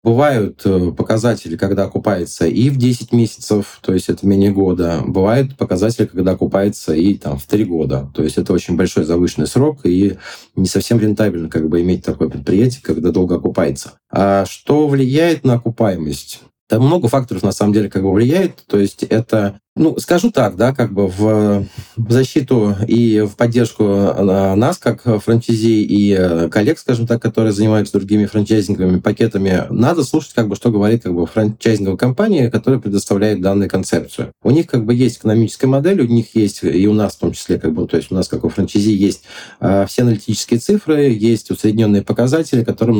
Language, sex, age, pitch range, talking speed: Russian, male, 20-39, 95-115 Hz, 175 wpm